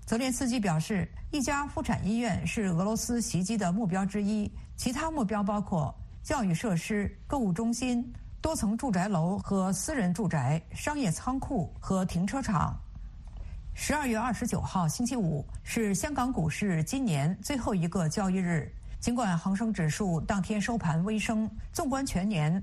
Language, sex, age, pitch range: Chinese, female, 50-69, 170-230 Hz